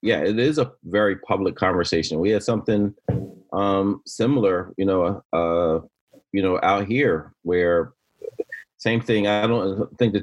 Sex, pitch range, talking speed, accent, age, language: male, 95-120 Hz, 155 wpm, American, 30-49, English